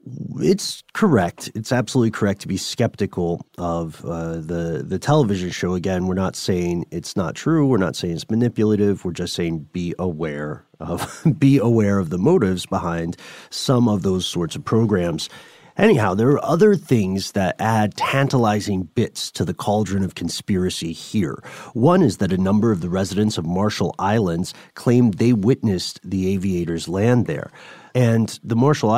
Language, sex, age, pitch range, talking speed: English, male, 30-49, 95-125 Hz, 165 wpm